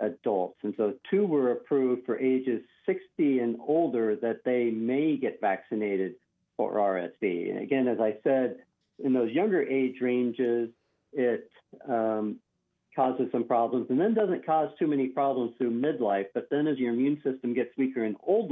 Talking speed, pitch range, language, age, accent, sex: 170 wpm, 110-130 Hz, English, 50-69, American, male